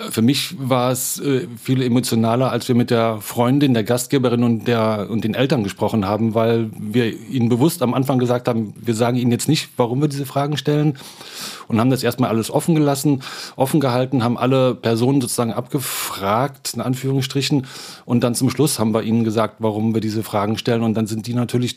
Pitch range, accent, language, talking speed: 110-130 Hz, German, German, 200 wpm